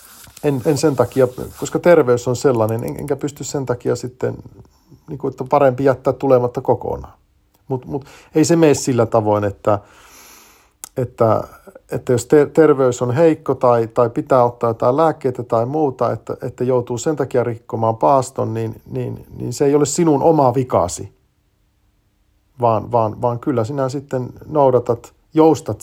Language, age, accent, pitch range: Finnish, 50-69, native, 110-145 Hz